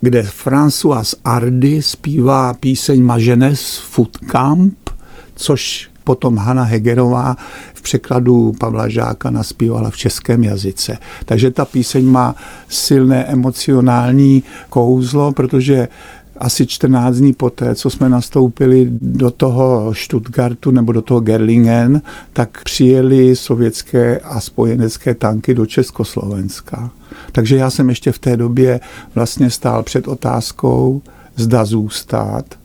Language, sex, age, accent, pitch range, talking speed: Czech, male, 50-69, native, 115-130 Hz, 115 wpm